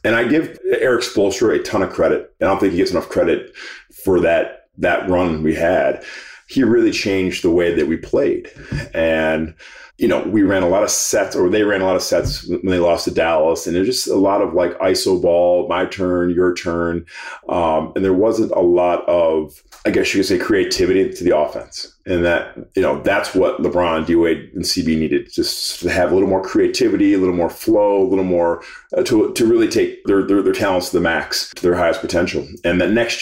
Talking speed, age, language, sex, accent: 230 wpm, 40-59, English, male, American